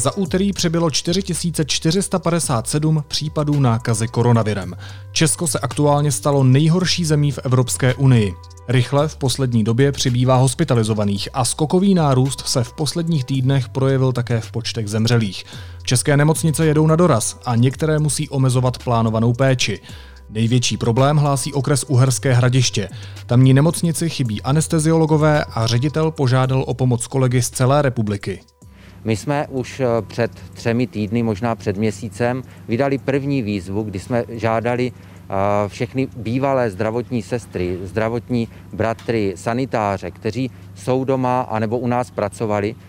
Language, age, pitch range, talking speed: Czech, 30-49, 110-135 Hz, 130 wpm